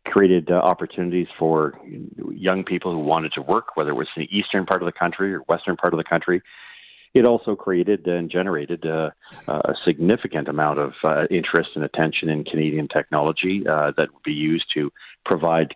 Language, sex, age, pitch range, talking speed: English, male, 40-59, 75-90 Hz, 185 wpm